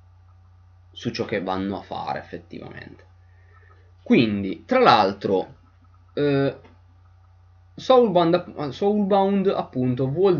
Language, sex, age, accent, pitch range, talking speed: Italian, male, 20-39, native, 90-125 Hz, 80 wpm